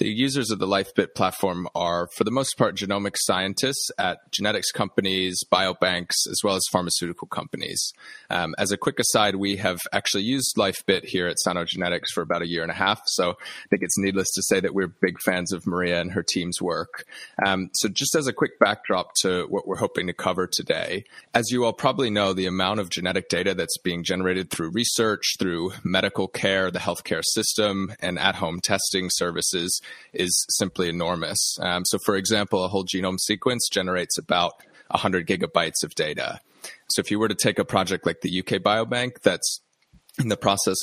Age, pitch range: 30-49, 90-105 Hz